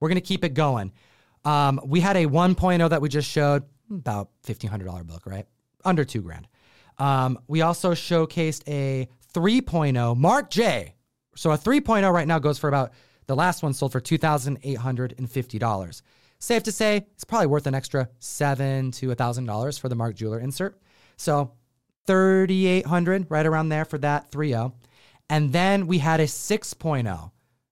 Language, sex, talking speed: English, male, 160 wpm